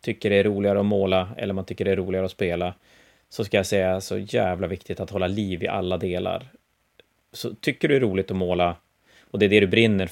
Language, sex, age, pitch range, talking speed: Swedish, male, 30-49, 95-115 Hz, 235 wpm